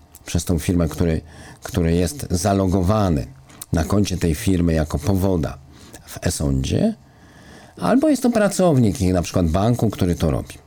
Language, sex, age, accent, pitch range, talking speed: Polish, male, 50-69, native, 85-125 Hz, 145 wpm